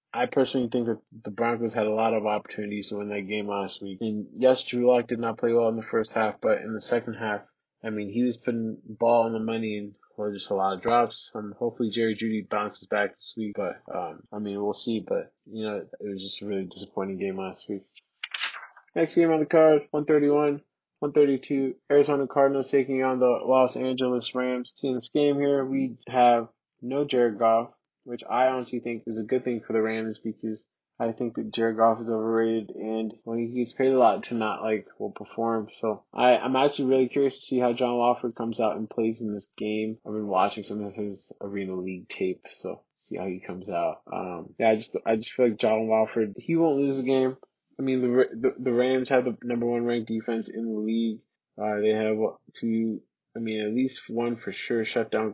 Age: 20-39